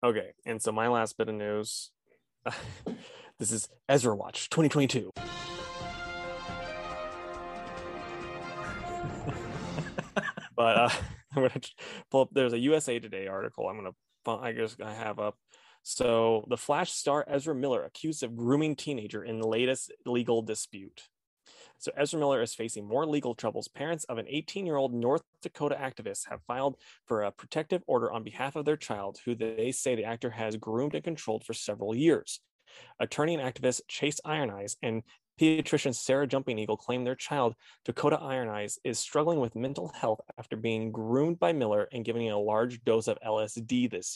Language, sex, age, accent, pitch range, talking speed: English, male, 20-39, American, 110-145 Hz, 165 wpm